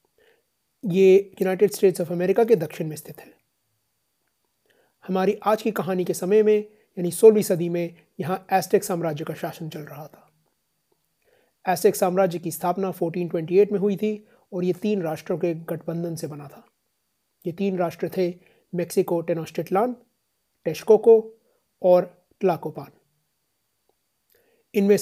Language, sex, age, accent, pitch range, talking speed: Hindi, male, 30-49, native, 170-205 Hz, 130 wpm